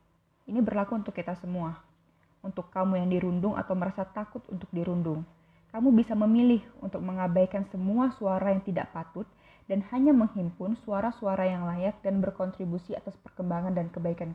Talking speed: 150 wpm